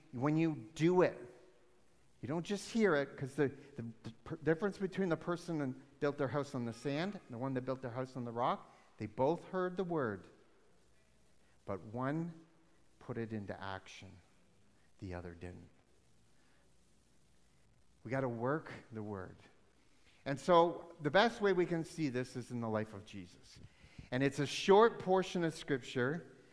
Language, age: English, 50-69